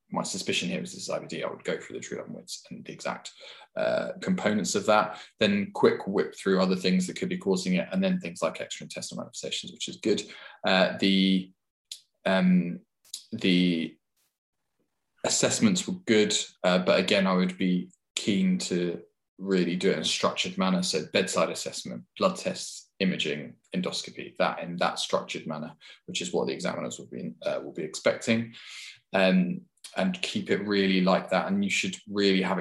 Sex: male